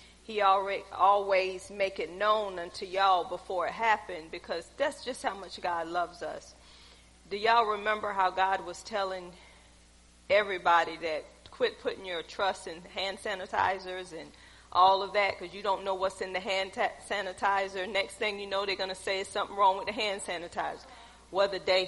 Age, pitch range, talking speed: 40-59, 170-215 Hz, 175 wpm